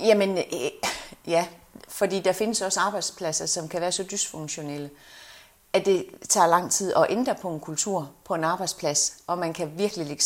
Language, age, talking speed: Danish, 30-49, 175 wpm